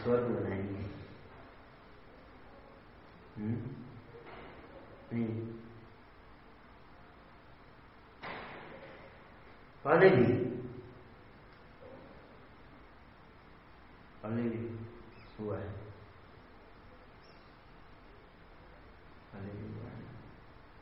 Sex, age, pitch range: male, 50-69, 105-115 Hz